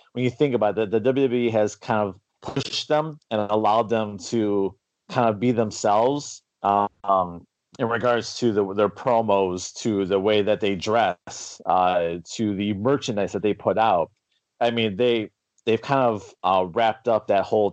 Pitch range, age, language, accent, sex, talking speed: 95-115 Hz, 30-49, English, American, male, 180 wpm